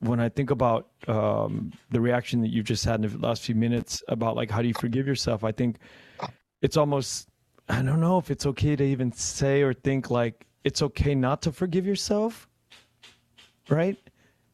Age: 30-49